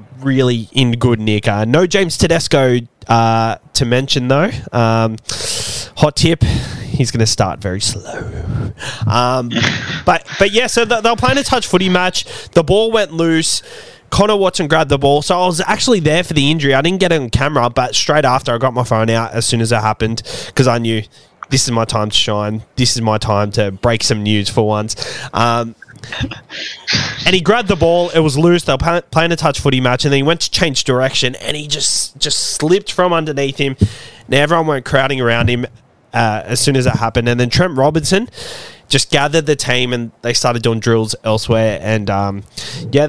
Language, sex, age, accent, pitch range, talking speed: English, male, 20-39, Australian, 115-155 Hz, 205 wpm